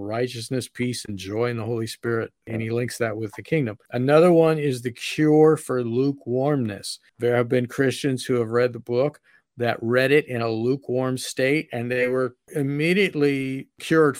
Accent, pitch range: American, 120-145 Hz